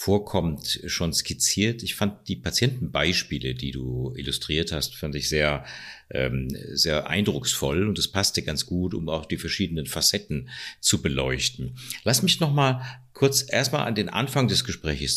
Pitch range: 80-115 Hz